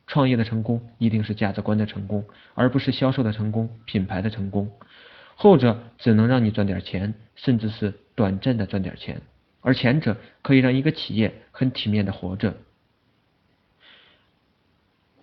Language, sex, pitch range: Chinese, male, 105-130 Hz